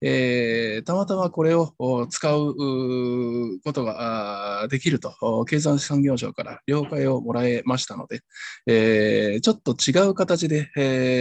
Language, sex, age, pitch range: Japanese, male, 20-39, 110-145 Hz